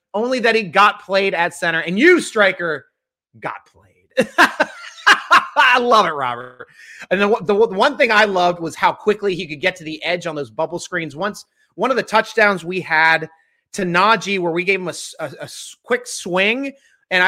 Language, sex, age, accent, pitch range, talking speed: English, male, 30-49, American, 170-240 Hz, 195 wpm